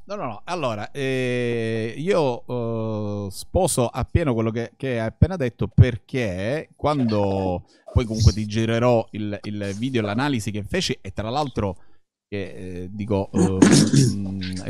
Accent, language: native, Italian